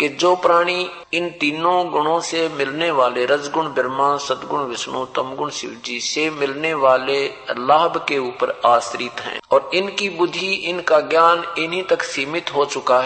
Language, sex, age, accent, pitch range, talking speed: Hindi, male, 50-69, native, 135-170 Hz, 160 wpm